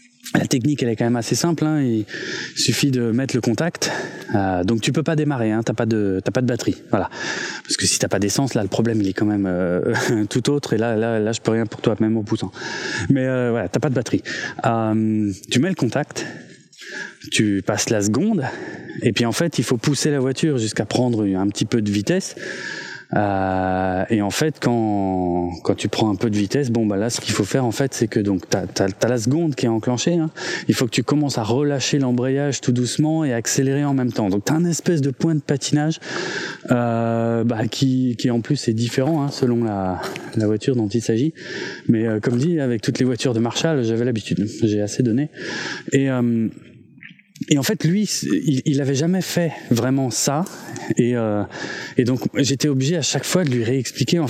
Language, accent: French, French